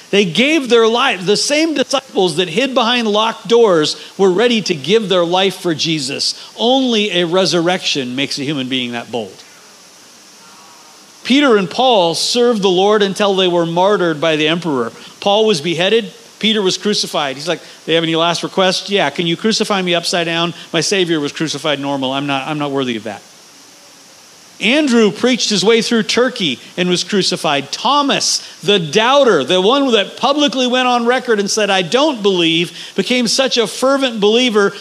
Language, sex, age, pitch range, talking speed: English, male, 40-59, 165-225 Hz, 180 wpm